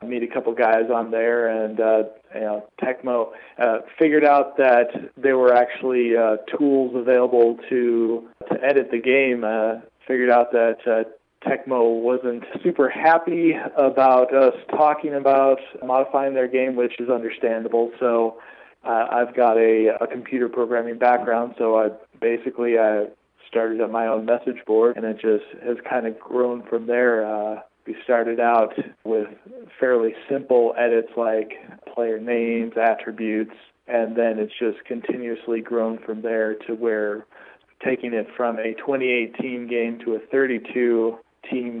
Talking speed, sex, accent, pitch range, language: 150 wpm, male, American, 110-125 Hz, English